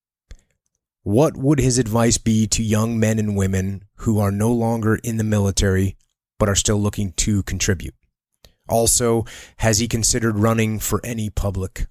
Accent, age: American, 30-49